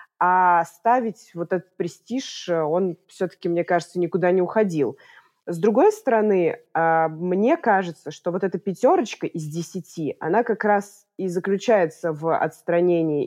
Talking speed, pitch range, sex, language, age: 135 wpm, 170-205 Hz, female, Russian, 20-39